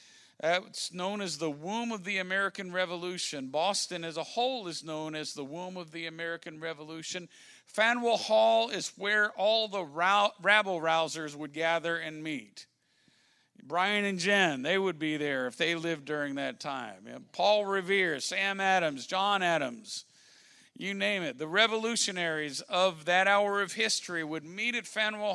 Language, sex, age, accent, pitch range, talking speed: English, male, 50-69, American, 160-210 Hz, 160 wpm